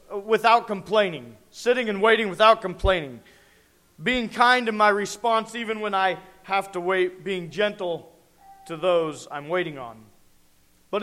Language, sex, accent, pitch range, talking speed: English, male, American, 170-220 Hz, 140 wpm